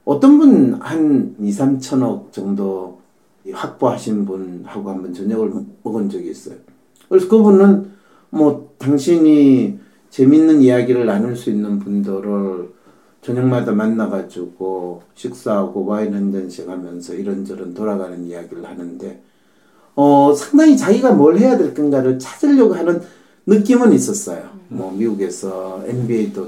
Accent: Korean